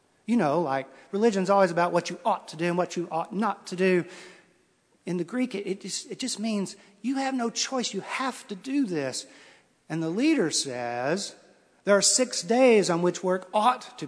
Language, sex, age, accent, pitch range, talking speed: English, male, 50-69, American, 130-195 Hz, 210 wpm